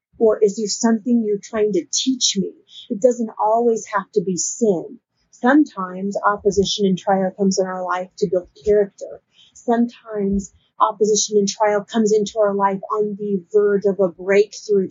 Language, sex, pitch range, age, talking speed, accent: English, female, 195-220 Hz, 30-49, 165 wpm, American